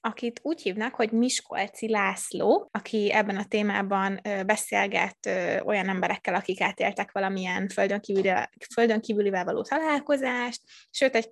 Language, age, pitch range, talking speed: Hungarian, 20-39, 200-235 Hz, 115 wpm